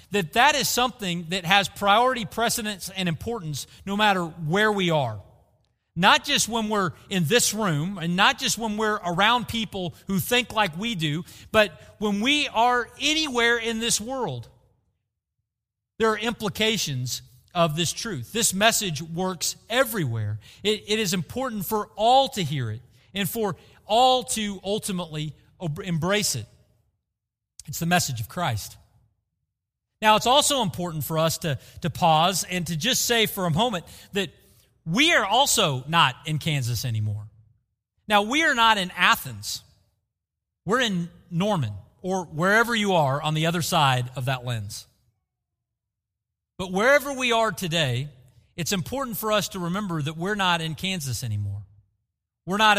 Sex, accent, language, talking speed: male, American, English, 155 wpm